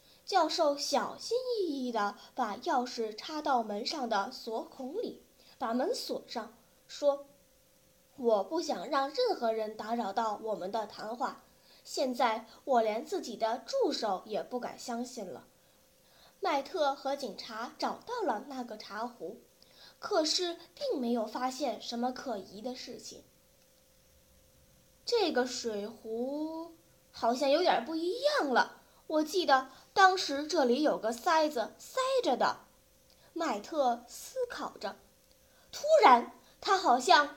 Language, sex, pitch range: Chinese, female, 235-315 Hz